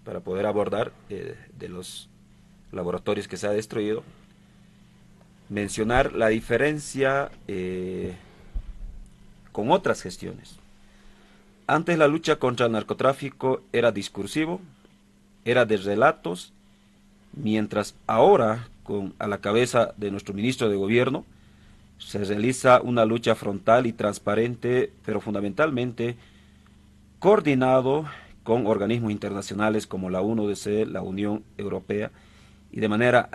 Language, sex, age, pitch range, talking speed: Spanish, male, 40-59, 100-125 Hz, 110 wpm